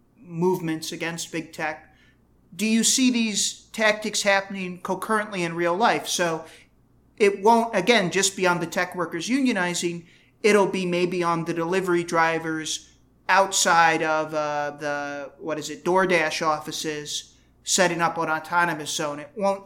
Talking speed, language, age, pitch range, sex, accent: 145 wpm, English, 40-59, 160-195 Hz, male, American